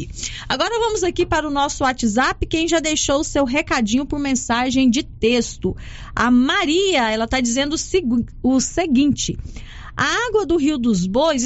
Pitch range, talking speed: 220-305 Hz, 155 wpm